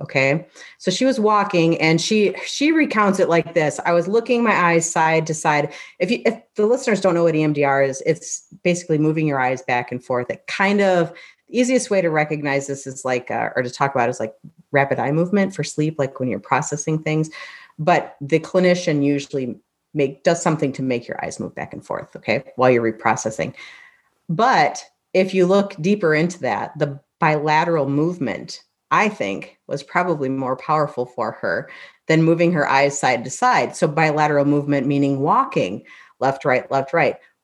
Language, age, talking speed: English, 40-59, 190 wpm